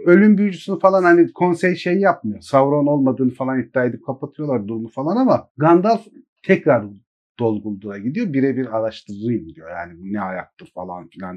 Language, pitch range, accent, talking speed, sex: Turkish, 110-160 Hz, native, 150 wpm, male